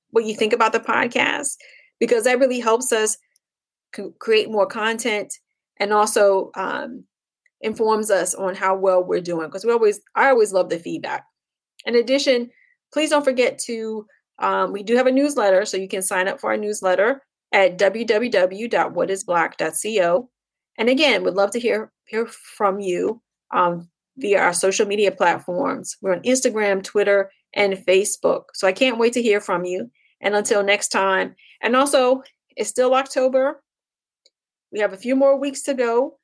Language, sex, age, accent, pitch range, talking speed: English, female, 30-49, American, 200-260 Hz, 165 wpm